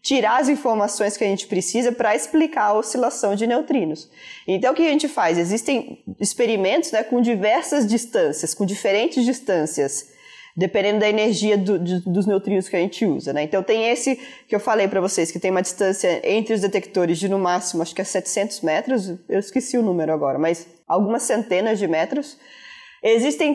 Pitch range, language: 195-245 Hz, Portuguese